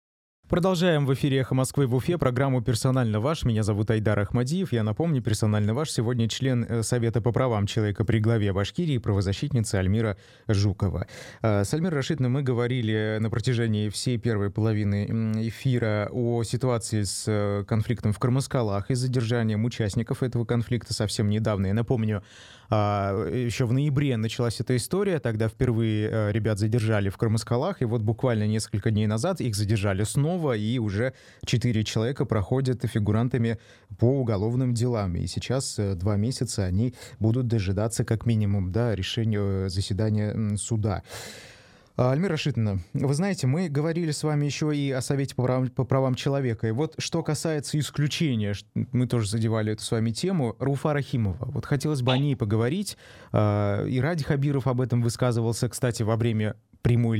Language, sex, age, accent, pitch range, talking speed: Russian, male, 20-39, native, 105-130 Hz, 155 wpm